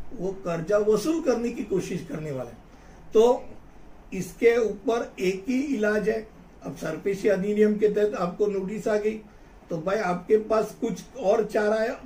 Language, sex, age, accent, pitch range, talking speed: Hindi, male, 60-79, native, 185-230 Hz, 160 wpm